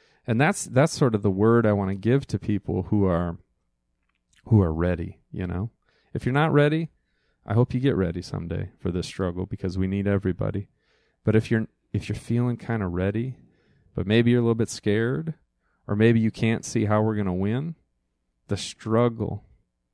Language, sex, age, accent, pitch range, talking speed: English, male, 40-59, American, 90-115 Hz, 195 wpm